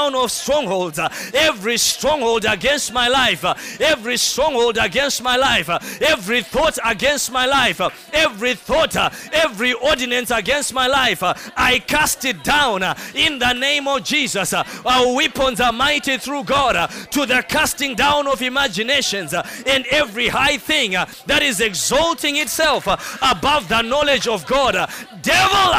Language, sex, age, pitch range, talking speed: English, male, 20-39, 250-295 Hz, 170 wpm